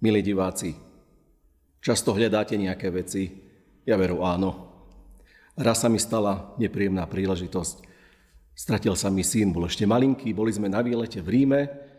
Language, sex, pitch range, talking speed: Slovak, male, 90-110 Hz, 140 wpm